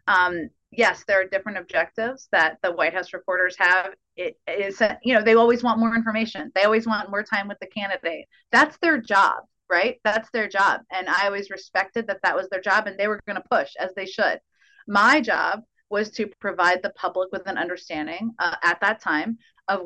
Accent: American